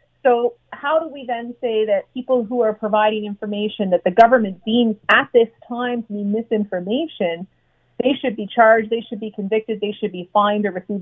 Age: 30-49